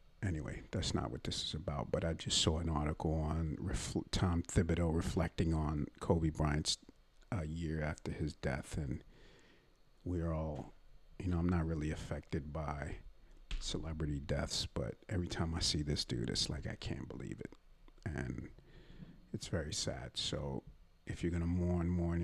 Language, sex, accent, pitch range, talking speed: English, male, American, 80-90 Hz, 165 wpm